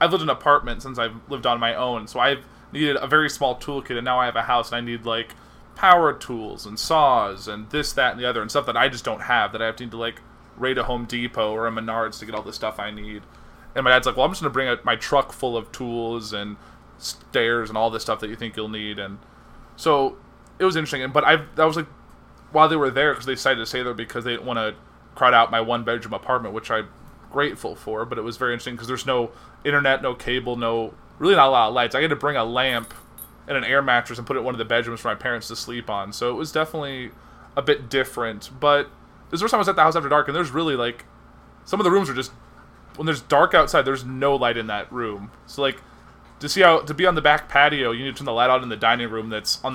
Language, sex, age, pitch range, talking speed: English, male, 20-39, 110-135 Hz, 280 wpm